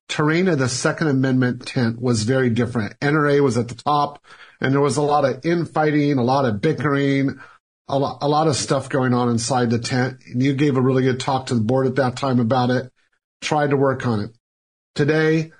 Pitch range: 125-150 Hz